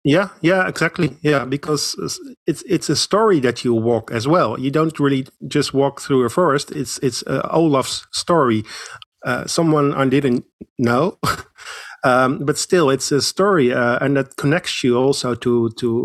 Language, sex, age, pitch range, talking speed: English, male, 50-69, 120-150 Hz, 170 wpm